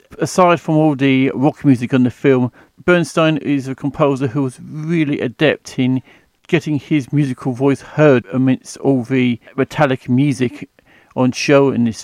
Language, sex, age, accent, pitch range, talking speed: English, male, 50-69, British, 125-155 Hz, 160 wpm